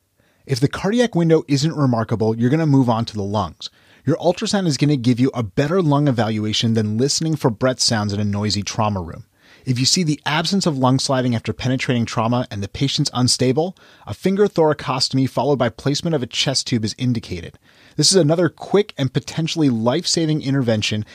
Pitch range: 120-160 Hz